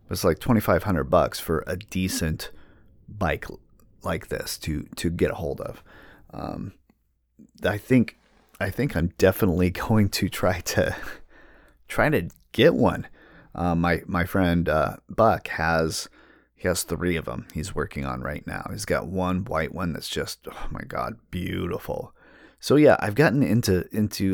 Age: 30-49